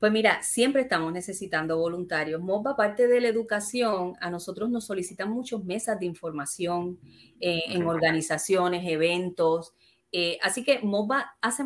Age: 30-49